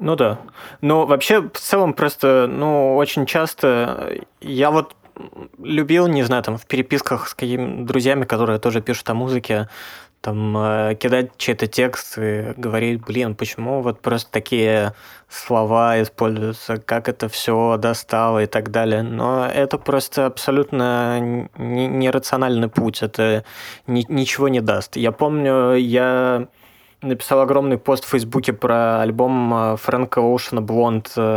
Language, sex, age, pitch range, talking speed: Russian, male, 20-39, 110-130 Hz, 135 wpm